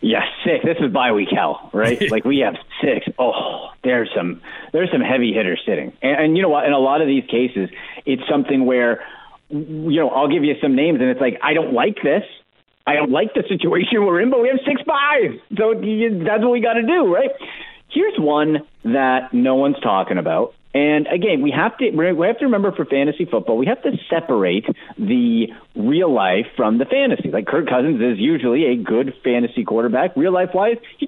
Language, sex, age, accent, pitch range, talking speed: English, male, 40-59, American, 145-235 Hz, 210 wpm